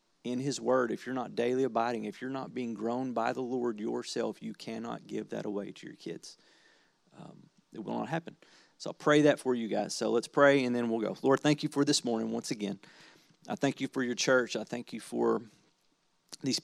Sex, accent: male, American